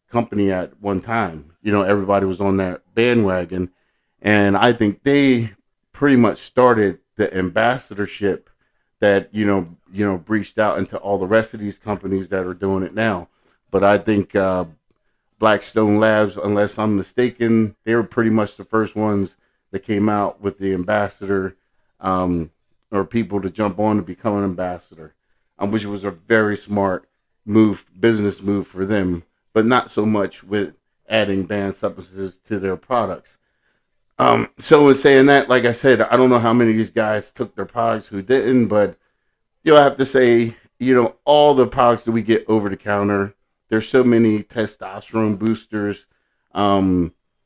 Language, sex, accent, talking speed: English, male, American, 170 wpm